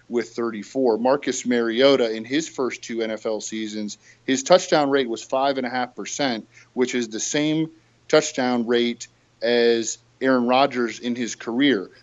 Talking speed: 155 wpm